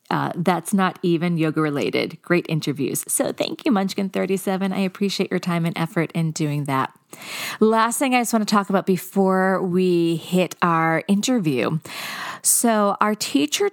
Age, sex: 40-59, female